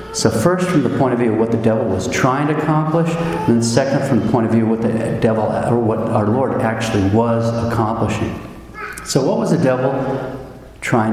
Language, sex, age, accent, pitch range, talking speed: English, male, 50-69, American, 115-150 Hz, 215 wpm